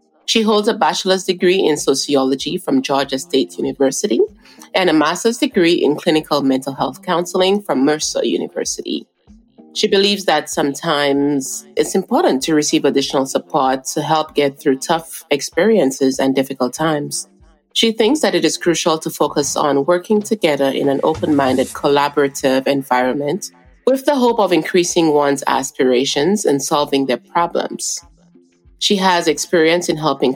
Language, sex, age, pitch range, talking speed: English, female, 30-49, 140-180 Hz, 145 wpm